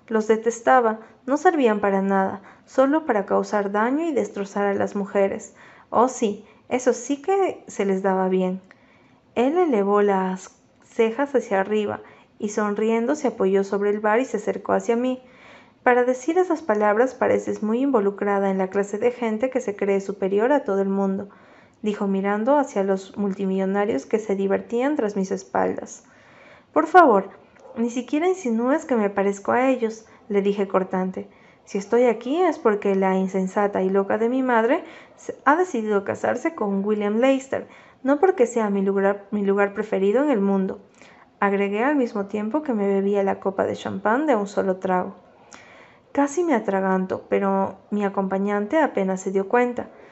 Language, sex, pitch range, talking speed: Spanish, female, 195-245 Hz, 165 wpm